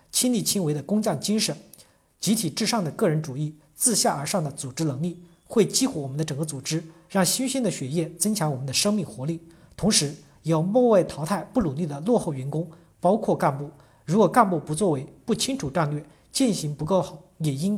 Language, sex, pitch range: Chinese, male, 150-195 Hz